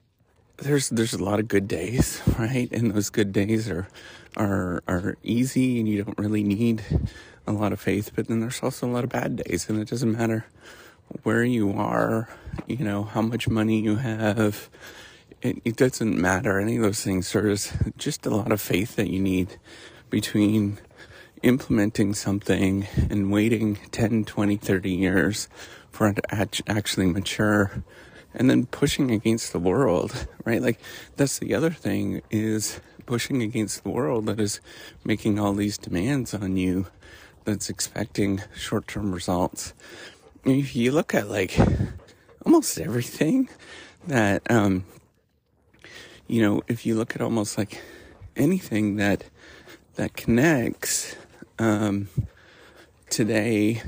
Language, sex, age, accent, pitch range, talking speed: English, male, 30-49, American, 100-115 Hz, 145 wpm